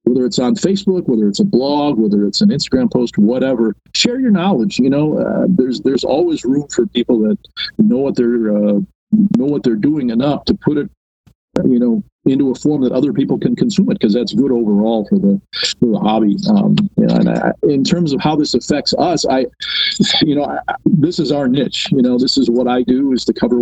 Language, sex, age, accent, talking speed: English, male, 50-69, American, 225 wpm